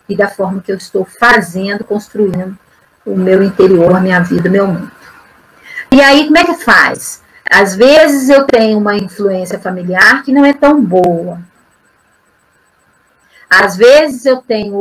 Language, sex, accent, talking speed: Portuguese, female, Brazilian, 160 wpm